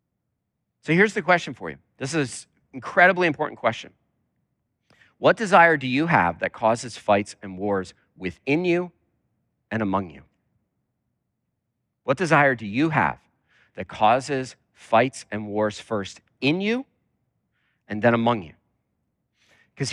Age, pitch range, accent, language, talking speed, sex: 40-59, 100-135 Hz, American, English, 135 wpm, male